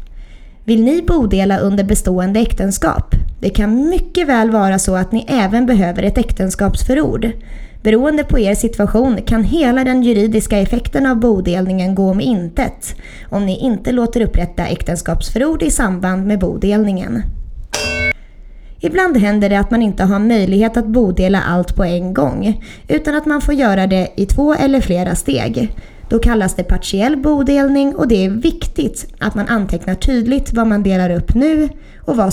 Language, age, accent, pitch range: Swedish, 20-39, native, 190-250 Hz